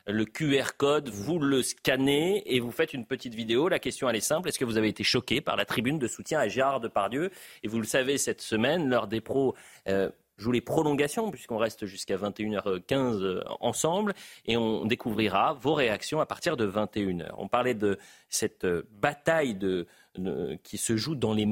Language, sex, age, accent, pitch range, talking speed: French, male, 30-49, French, 105-135 Hz, 190 wpm